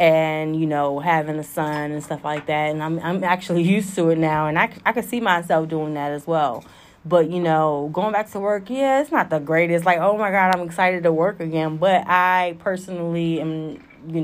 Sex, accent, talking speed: female, American, 230 wpm